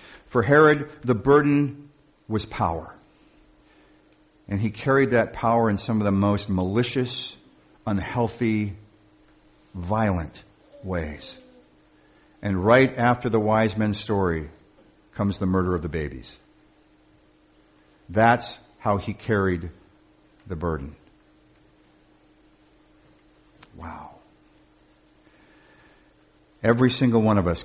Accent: American